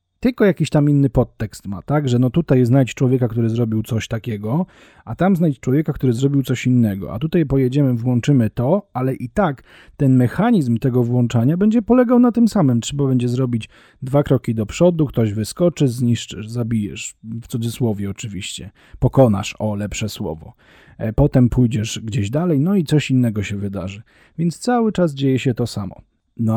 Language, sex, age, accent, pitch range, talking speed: Polish, male, 40-59, native, 115-150 Hz, 175 wpm